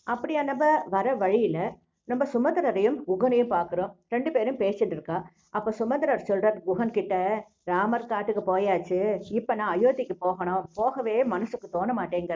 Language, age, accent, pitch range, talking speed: English, 50-69, Indian, 185-240 Hz, 120 wpm